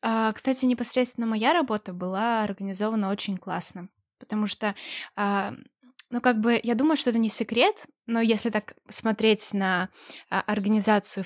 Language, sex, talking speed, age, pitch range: Russian, female, 135 wpm, 10-29, 205-245 Hz